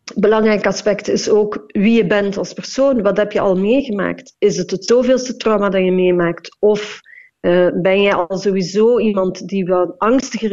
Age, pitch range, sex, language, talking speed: 40-59, 190-235 Hz, female, Dutch, 175 wpm